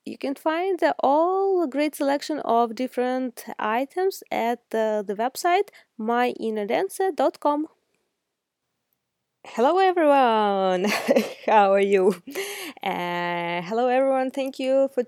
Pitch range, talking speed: 200-280 Hz, 105 wpm